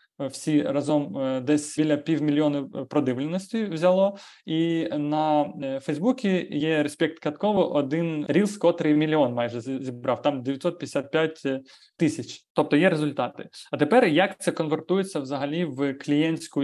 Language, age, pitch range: Ukrainian, 20-39, 145-175 Hz